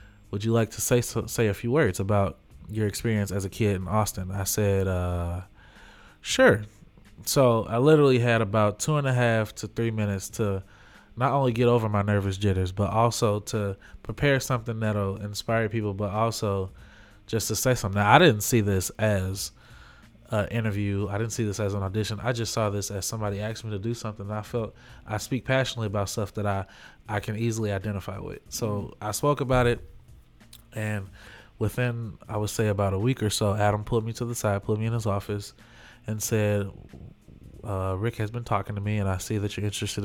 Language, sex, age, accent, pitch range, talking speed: English, male, 20-39, American, 100-115 Hz, 205 wpm